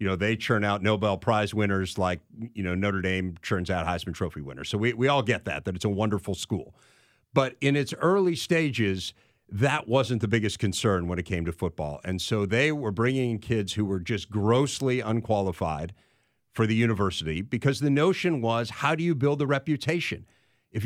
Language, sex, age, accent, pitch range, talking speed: English, male, 50-69, American, 100-135 Hz, 200 wpm